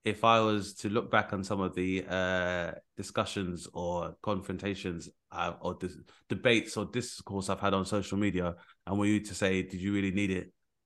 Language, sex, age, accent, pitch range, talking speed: English, male, 20-39, British, 95-110 Hz, 190 wpm